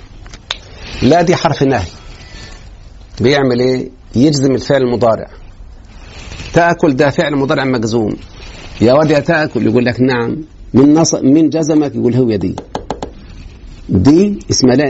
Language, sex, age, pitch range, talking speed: Arabic, male, 50-69, 95-150 Hz, 120 wpm